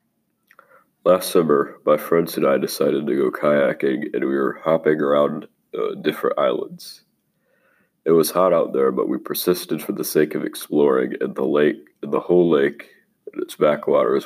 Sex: male